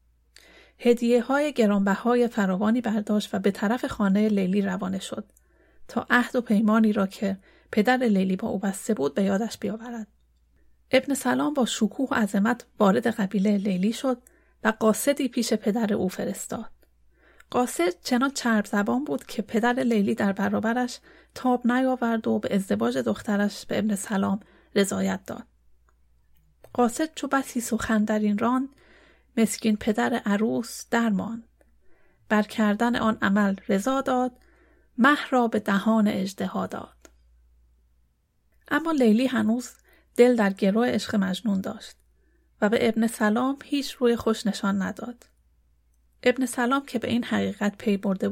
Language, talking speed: Persian, 140 wpm